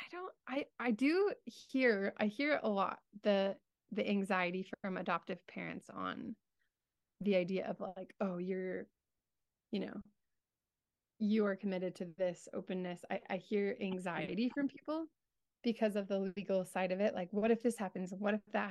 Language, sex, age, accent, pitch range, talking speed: English, female, 20-39, American, 185-215 Hz, 165 wpm